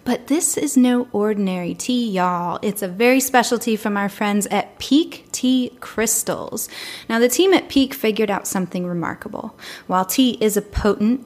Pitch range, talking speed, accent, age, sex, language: 200-250 Hz, 175 wpm, American, 20-39, female, English